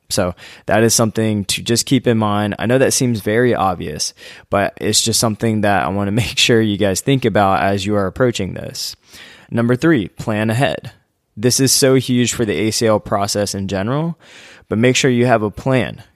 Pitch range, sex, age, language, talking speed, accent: 100-120 Hz, male, 20-39, English, 205 wpm, American